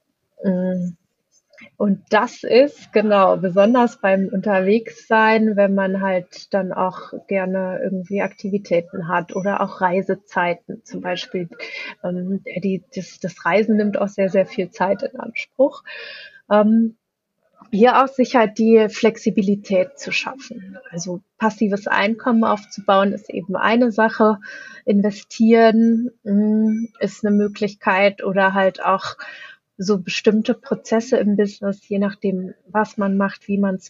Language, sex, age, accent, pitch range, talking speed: German, female, 30-49, German, 195-225 Hz, 120 wpm